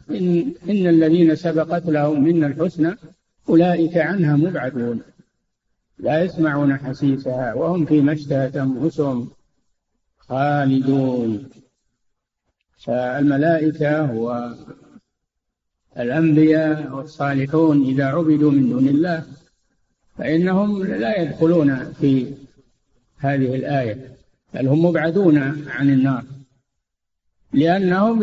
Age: 50-69